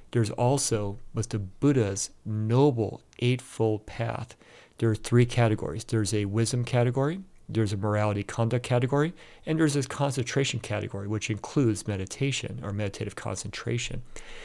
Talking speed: 135 wpm